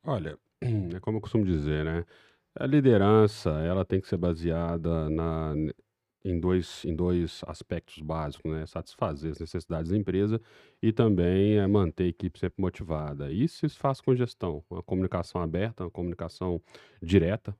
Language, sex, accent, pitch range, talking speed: Portuguese, male, Brazilian, 80-105 Hz, 155 wpm